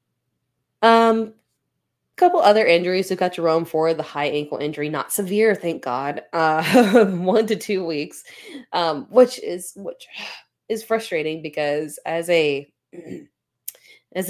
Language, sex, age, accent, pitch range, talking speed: English, female, 20-39, American, 145-185 Hz, 130 wpm